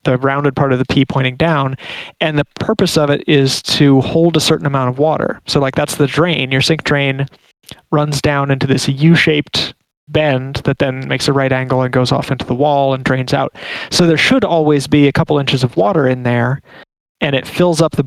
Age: 30-49